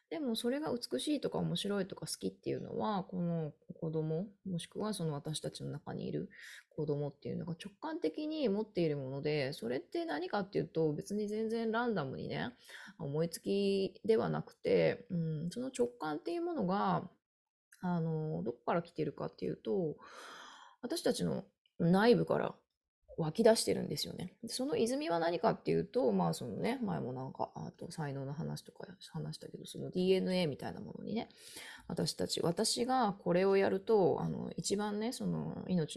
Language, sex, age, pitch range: Japanese, female, 20-39, 160-225 Hz